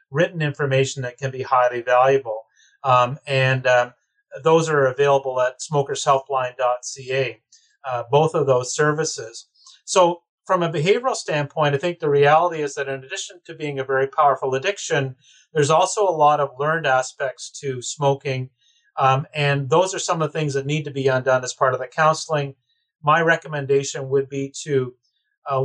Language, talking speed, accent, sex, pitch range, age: English, 165 wpm, American, male, 130-155 Hz, 30-49